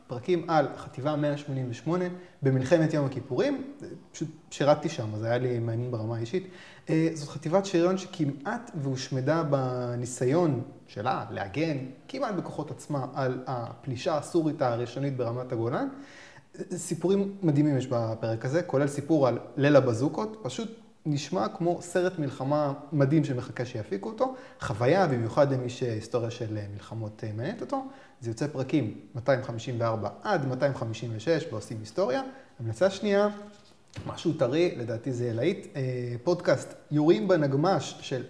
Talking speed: 125 wpm